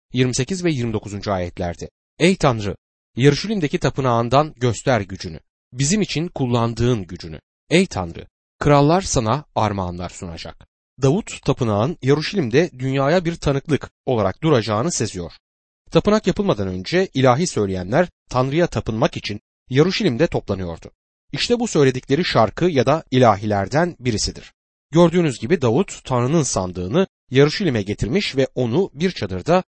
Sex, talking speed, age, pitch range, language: male, 120 wpm, 30-49, 105-165 Hz, Turkish